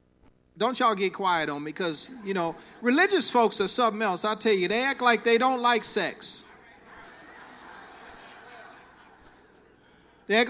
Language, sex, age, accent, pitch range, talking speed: English, male, 40-59, American, 210-255 Hz, 150 wpm